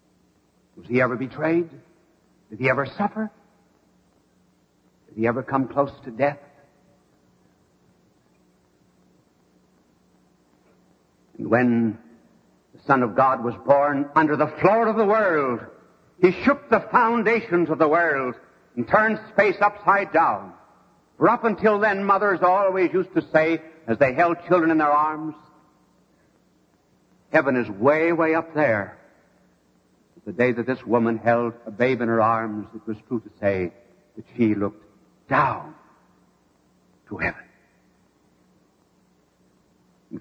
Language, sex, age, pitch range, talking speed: English, male, 60-79, 105-170 Hz, 130 wpm